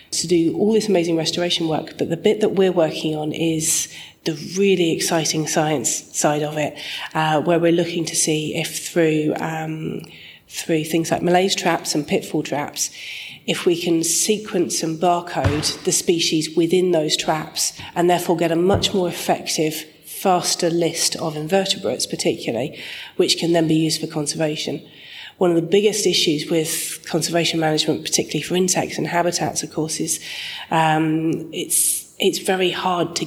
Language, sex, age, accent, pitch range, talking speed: English, female, 30-49, British, 155-175 Hz, 165 wpm